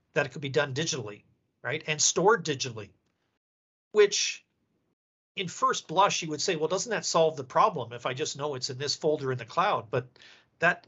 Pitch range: 130-155 Hz